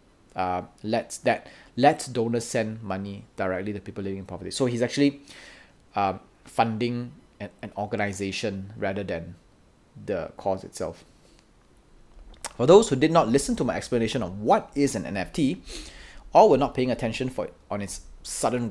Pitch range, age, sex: 105-135 Hz, 30-49, male